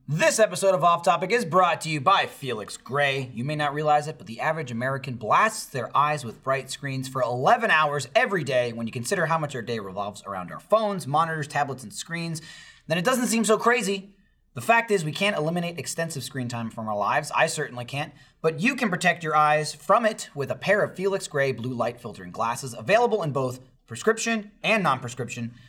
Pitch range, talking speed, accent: 135-195 Hz, 215 wpm, American